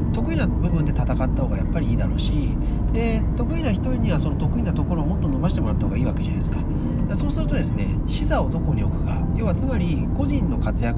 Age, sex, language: 40-59, male, Japanese